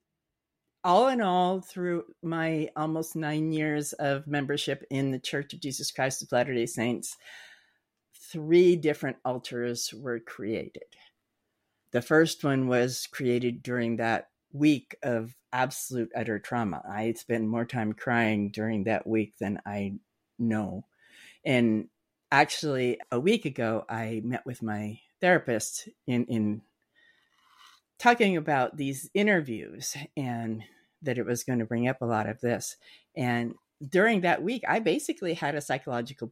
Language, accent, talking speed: English, American, 140 wpm